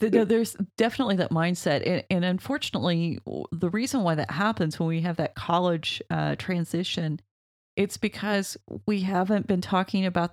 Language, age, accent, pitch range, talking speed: English, 40-59, American, 155-195 Hz, 150 wpm